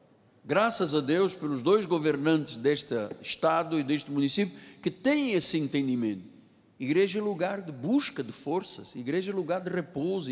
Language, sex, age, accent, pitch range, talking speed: Portuguese, male, 60-79, Brazilian, 155-225 Hz, 155 wpm